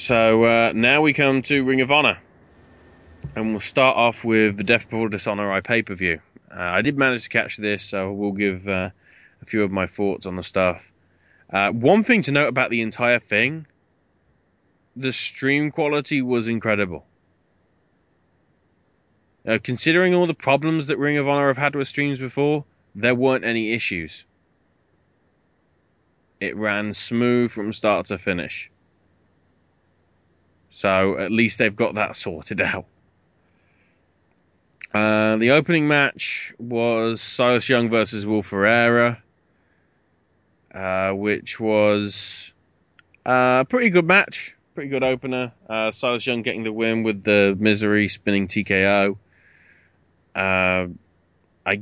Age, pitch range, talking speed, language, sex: 20-39, 95-120 Hz, 135 wpm, English, male